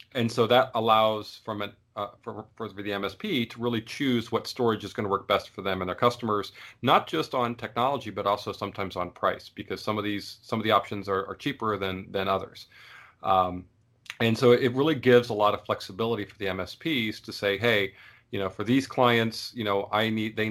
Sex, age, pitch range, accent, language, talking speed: male, 40-59, 100-115 Hz, American, English, 220 wpm